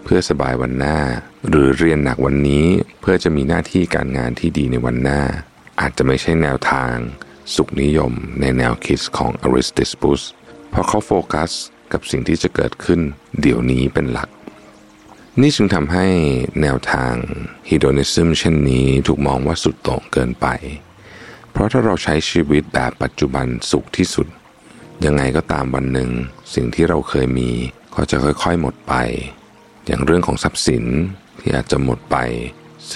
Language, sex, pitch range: Thai, male, 65-85 Hz